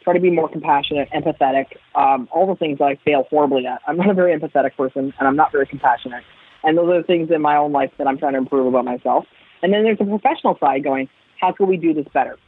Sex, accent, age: female, American, 20-39